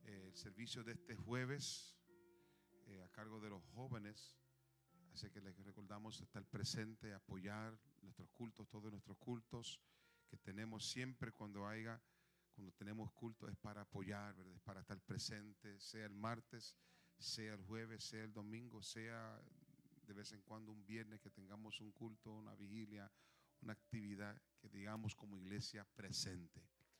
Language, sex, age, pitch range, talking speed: Spanish, male, 40-59, 105-130 Hz, 150 wpm